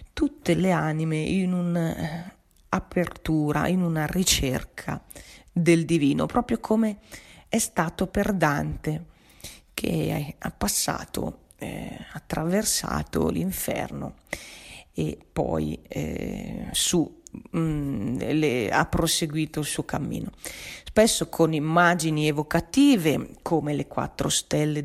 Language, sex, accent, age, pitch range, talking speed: Italian, female, native, 40-59, 150-185 Hz, 100 wpm